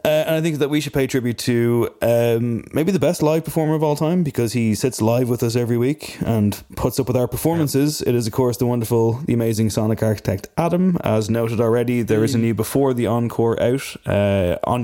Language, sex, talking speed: English, male, 230 wpm